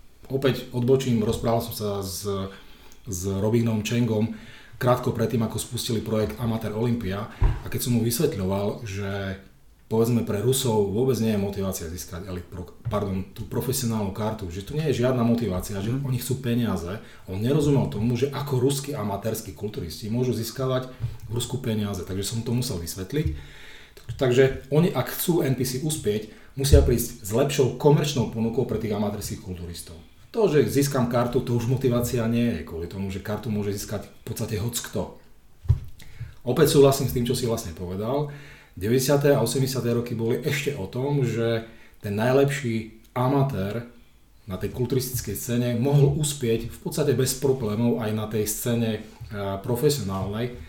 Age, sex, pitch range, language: 30-49, male, 105-130 Hz, Czech